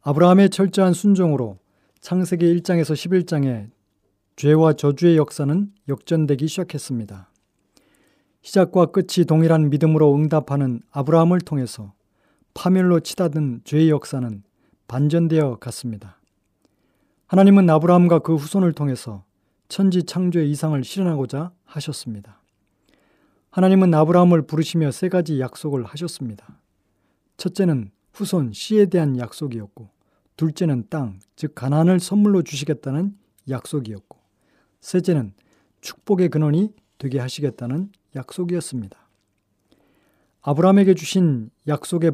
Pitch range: 120-175 Hz